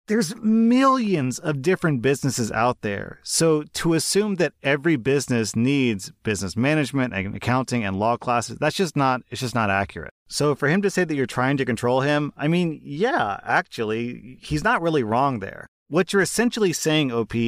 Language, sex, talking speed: English, male, 180 wpm